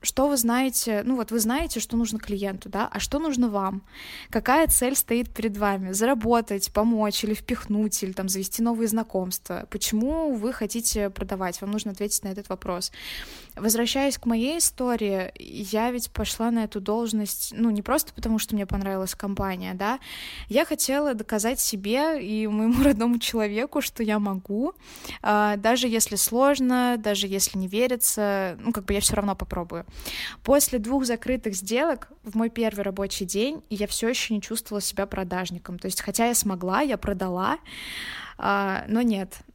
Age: 20-39